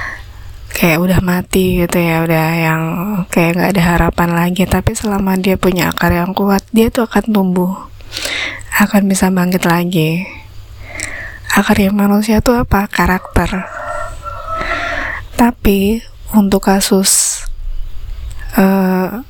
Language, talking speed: Indonesian, 115 wpm